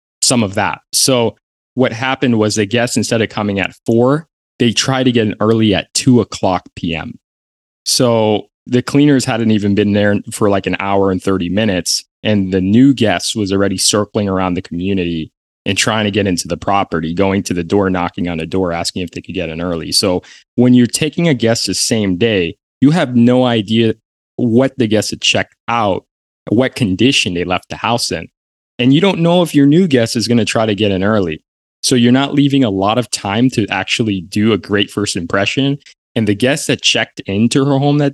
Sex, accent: male, American